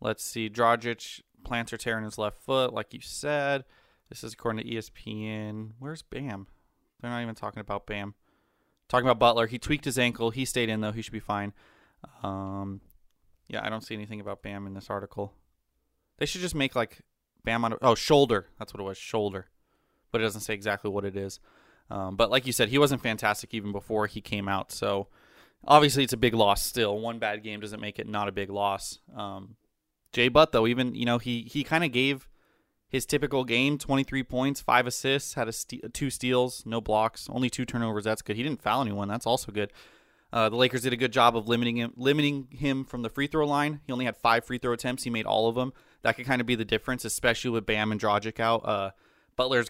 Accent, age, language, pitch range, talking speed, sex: American, 20-39, English, 105-130 Hz, 225 wpm, male